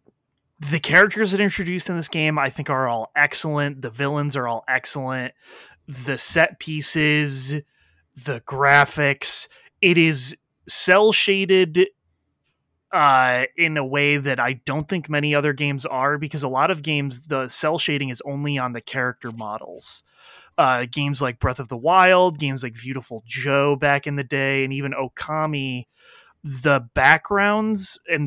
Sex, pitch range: male, 130-155 Hz